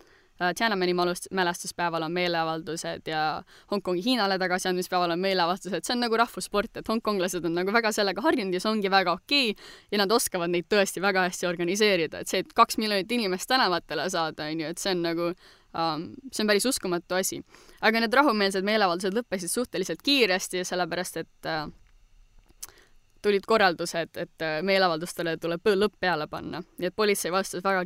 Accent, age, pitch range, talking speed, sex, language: Finnish, 20-39, 175-205 Hz, 165 wpm, female, English